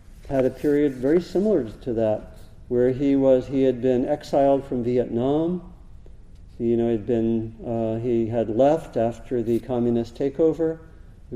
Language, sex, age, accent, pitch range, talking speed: English, male, 50-69, American, 115-140 Hz, 160 wpm